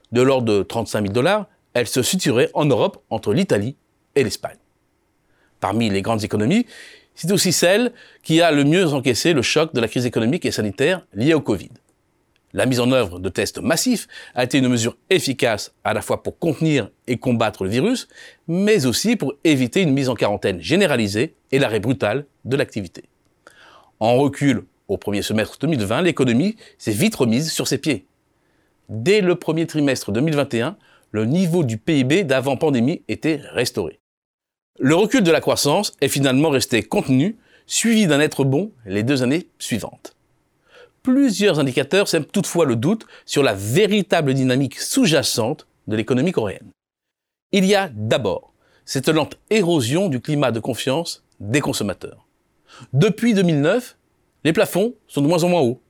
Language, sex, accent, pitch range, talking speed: French, male, French, 125-180 Hz, 165 wpm